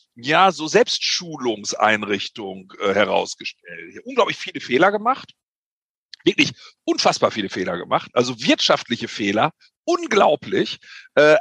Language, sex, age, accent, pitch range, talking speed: German, male, 50-69, German, 145-200 Hz, 100 wpm